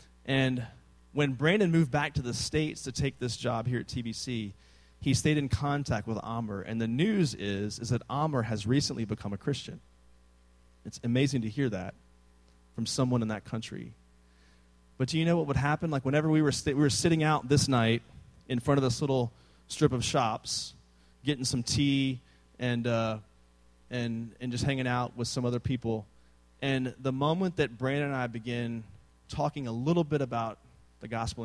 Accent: American